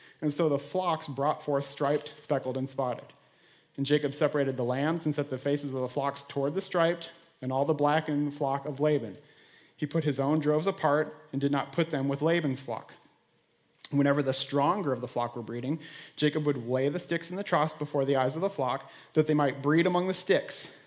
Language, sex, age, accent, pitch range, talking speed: English, male, 30-49, American, 140-165 Hz, 215 wpm